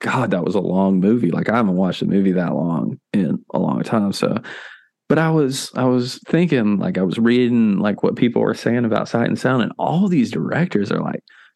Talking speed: 230 wpm